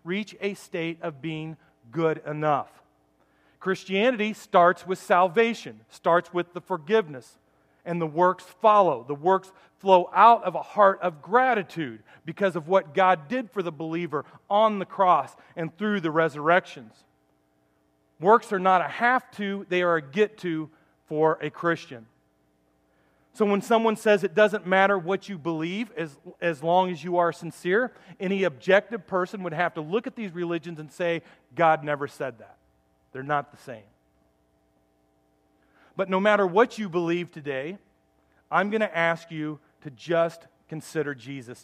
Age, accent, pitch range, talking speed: 40-59, American, 145-190 Hz, 160 wpm